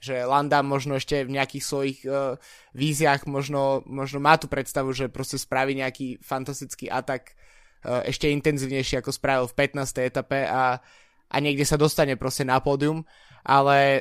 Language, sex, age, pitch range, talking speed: Slovak, male, 20-39, 135-155 Hz, 155 wpm